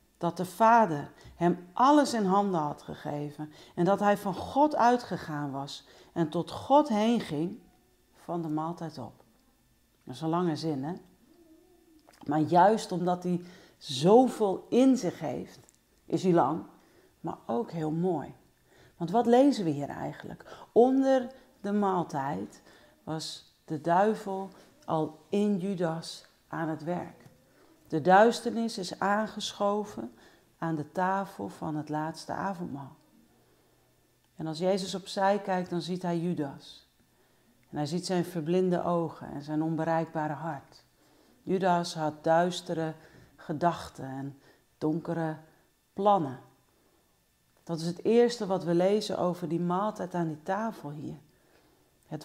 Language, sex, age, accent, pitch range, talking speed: Dutch, female, 40-59, Dutch, 155-195 Hz, 135 wpm